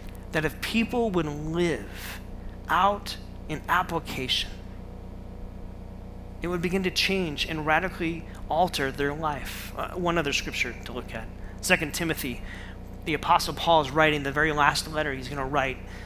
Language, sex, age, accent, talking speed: English, male, 30-49, American, 145 wpm